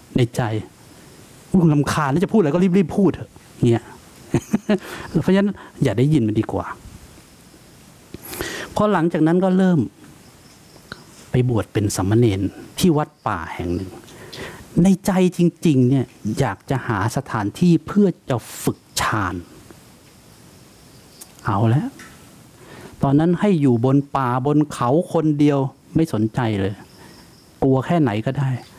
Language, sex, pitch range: English, male, 115-165 Hz